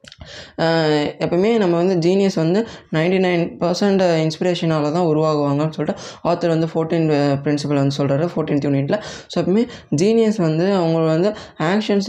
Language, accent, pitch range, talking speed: Tamil, native, 155-185 Hz, 135 wpm